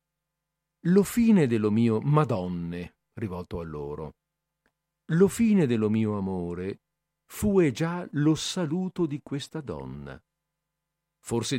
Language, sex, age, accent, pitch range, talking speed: Italian, male, 50-69, native, 105-175 Hz, 110 wpm